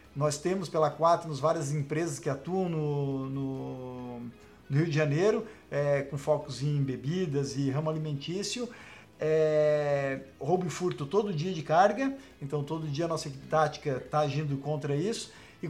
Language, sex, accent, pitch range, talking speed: Portuguese, male, Brazilian, 150-200 Hz, 160 wpm